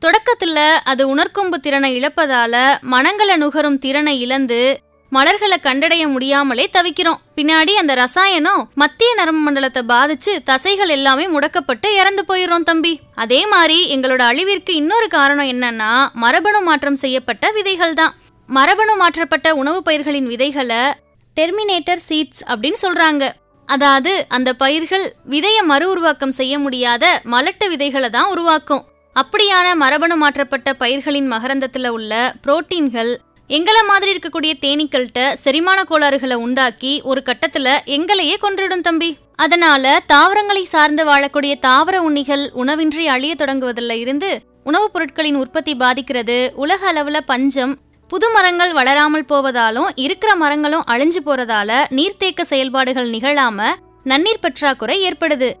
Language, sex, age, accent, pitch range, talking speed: English, female, 20-39, Indian, 270-345 Hz, 85 wpm